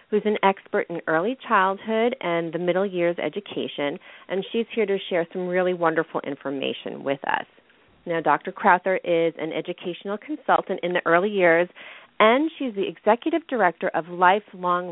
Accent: American